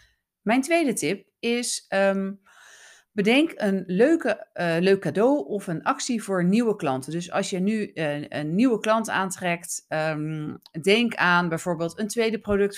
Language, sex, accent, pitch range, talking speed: Dutch, female, Dutch, 160-225 Hz, 140 wpm